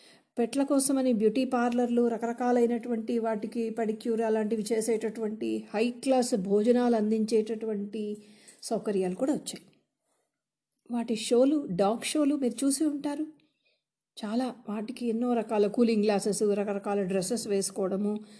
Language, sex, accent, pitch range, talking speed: Telugu, female, native, 215-265 Hz, 100 wpm